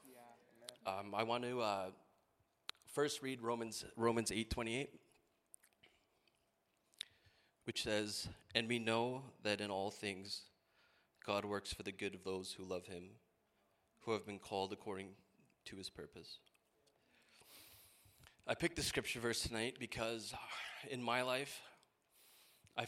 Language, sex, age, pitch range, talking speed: English, male, 30-49, 100-120 Hz, 125 wpm